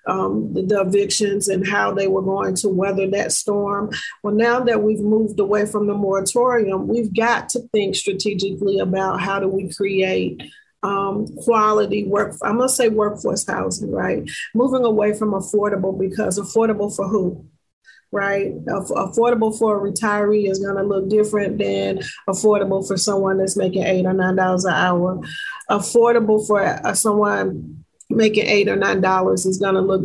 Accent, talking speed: American, 165 wpm